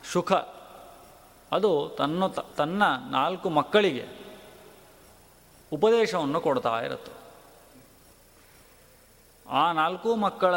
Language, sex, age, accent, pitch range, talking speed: Kannada, male, 30-49, native, 145-200 Hz, 70 wpm